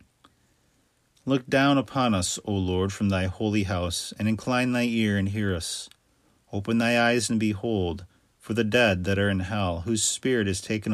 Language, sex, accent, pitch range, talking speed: English, male, American, 95-110 Hz, 180 wpm